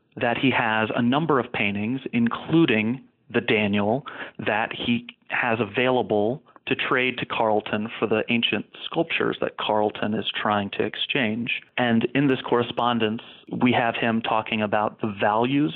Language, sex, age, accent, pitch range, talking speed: English, male, 40-59, American, 110-125 Hz, 150 wpm